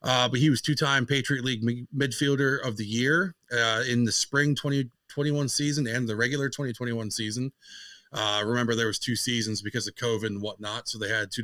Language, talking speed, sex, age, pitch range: English, 195 wpm, male, 30-49, 110-130 Hz